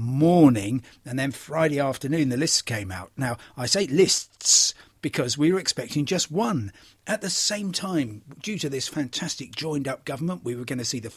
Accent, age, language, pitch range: British, 40-59, English, 125-165 Hz